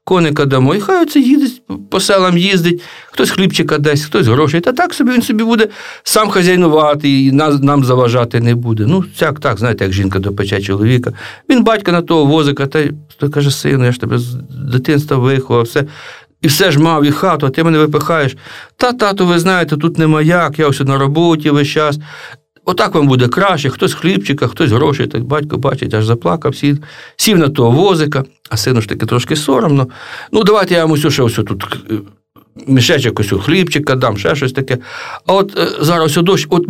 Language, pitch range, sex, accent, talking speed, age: Russian, 125-175 Hz, male, native, 200 wpm, 50-69